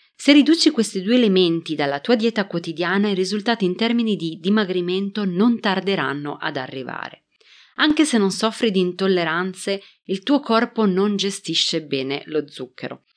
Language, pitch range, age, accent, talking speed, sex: Italian, 160-220 Hz, 30-49, native, 150 wpm, female